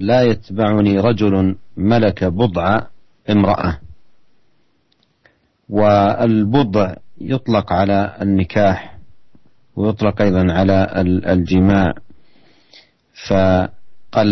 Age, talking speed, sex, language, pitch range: 40-59, 65 wpm, male, Indonesian, 95-120 Hz